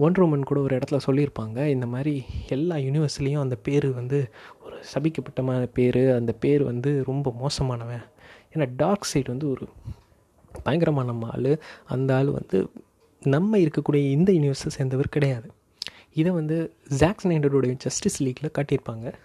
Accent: native